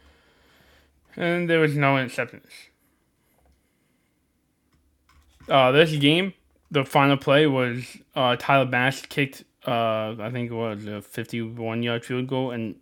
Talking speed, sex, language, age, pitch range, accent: 120 wpm, male, English, 20-39, 110-140 Hz, American